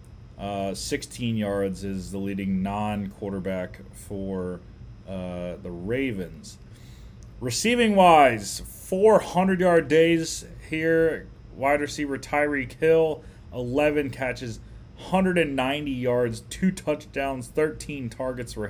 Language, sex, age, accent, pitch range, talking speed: English, male, 30-49, American, 110-140 Hz, 90 wpm